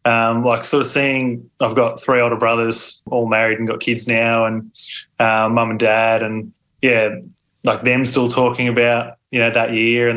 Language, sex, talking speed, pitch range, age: English, male, 195 wpm, 115-130 Hz, 20-39